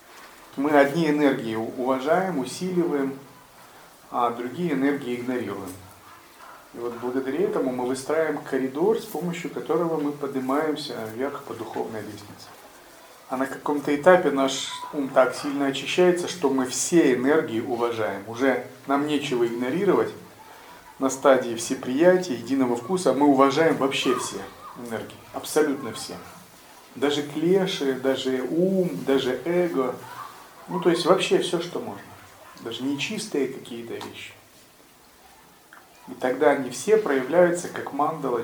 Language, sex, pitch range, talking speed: Russian, male, 125-150 Hz, 125 wpm